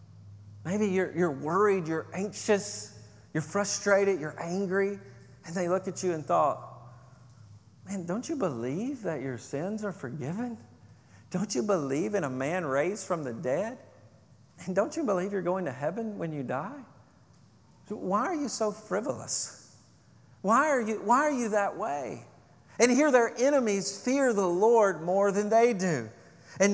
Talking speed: 160 wpm